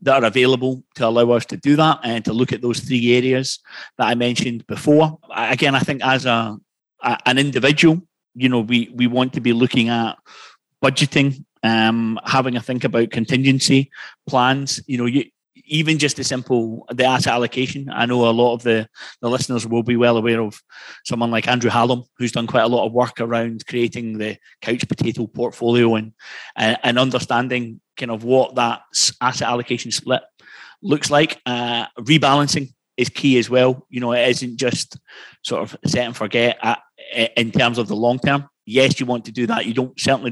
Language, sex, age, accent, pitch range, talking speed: English, male, 30-49, British, 115-130 Hz, 190 wpm